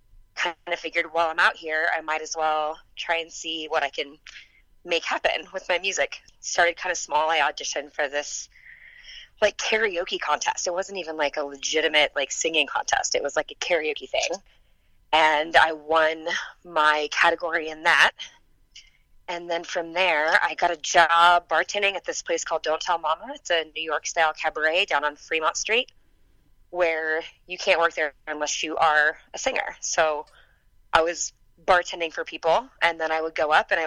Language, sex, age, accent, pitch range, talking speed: English, female, 20-39, American, 155-175 Hz, 185 wpm